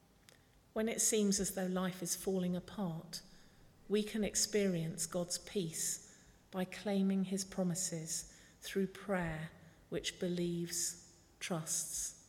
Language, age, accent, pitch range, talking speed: English, 40-59, British, 160-190 Hz, 110 wpm